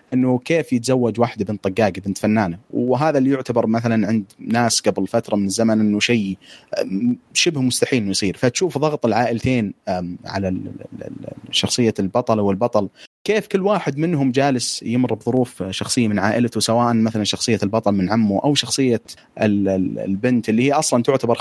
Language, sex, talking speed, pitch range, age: Arabic, male, 150 wpm, 105-130 Hz, 30-49